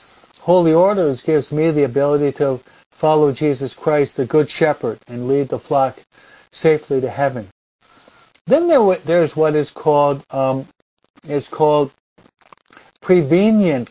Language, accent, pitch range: English, American, 130-160 Hz